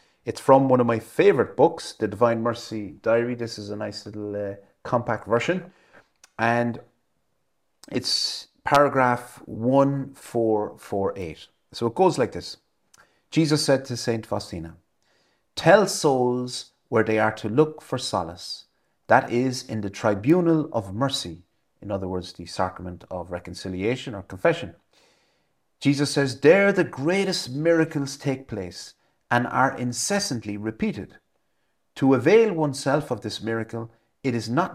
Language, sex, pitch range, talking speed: English, male, 105-140 Hz, 135 wpm